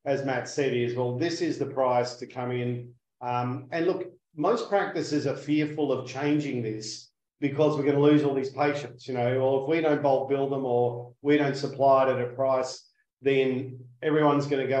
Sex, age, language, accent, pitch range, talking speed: male, 40-59, English, Australian, 125-150 Hz, 210 wpm